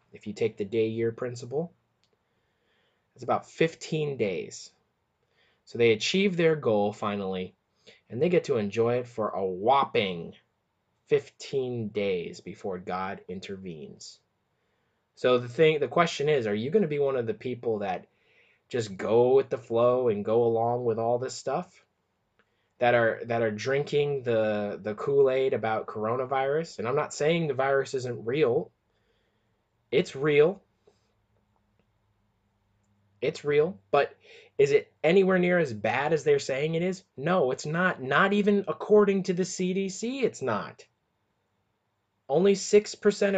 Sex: male